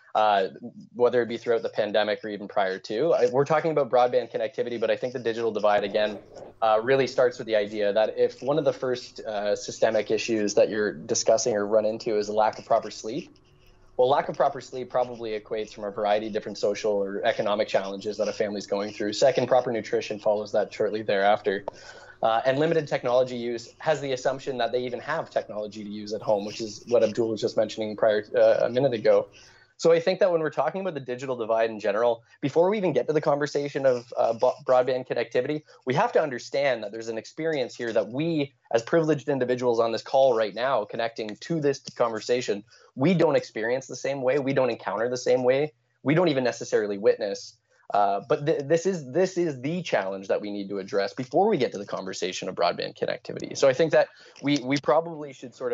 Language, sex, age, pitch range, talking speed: English, male, 20-39, 110-165 Hz, 220 wpm